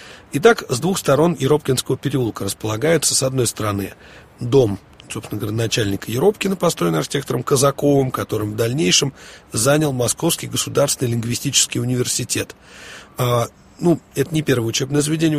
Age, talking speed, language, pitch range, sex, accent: 30-49, 125 wpm, Russian, 115-145 Hz, male, native